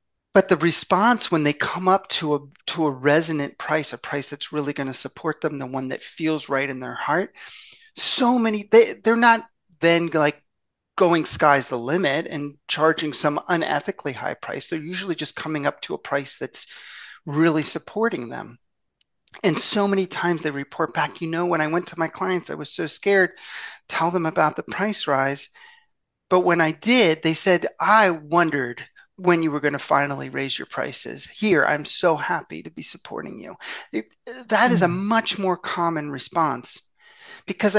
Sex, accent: male, American